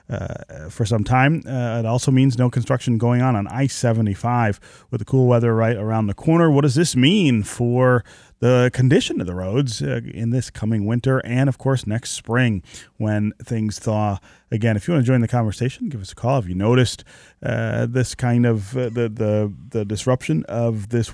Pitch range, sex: 105-125 Hz, male